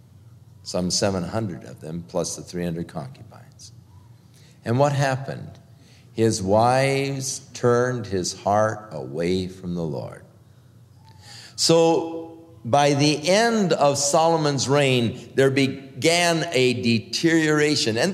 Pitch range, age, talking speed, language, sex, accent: 115-165 Hz, 50-69, 105 wpm, English, male, American